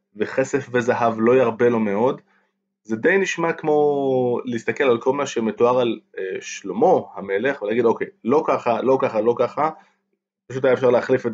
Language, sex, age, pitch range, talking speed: Hebrew, male, 20-39, 120-185 Hz, 165 wpm